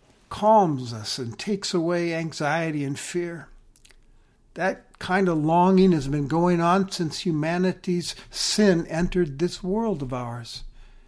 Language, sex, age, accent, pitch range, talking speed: English, male, 60-79, American, 145-195 Hz, 130 wpm